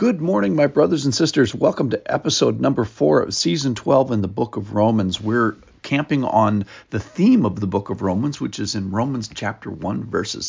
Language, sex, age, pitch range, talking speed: English, male, 50-69, 100-125 Hz, 205 wpm